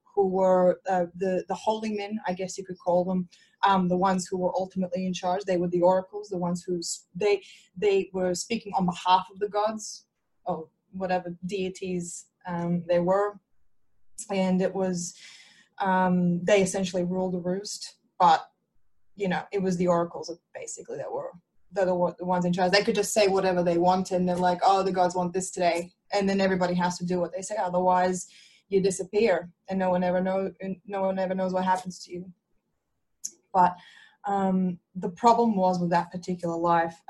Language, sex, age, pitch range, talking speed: English, female, 20-39, 180-200 Hz, 190 wpm